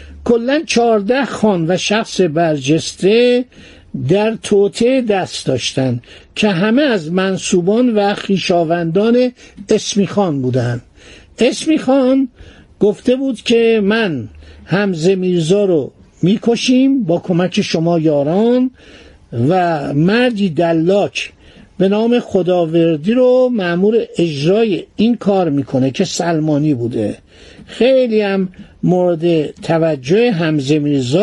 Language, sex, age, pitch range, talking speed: Persian, male, 60-79, 165-225 Hz, 105 wpm